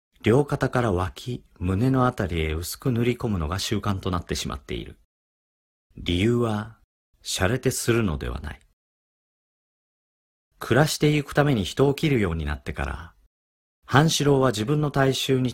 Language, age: Japanese, 40-59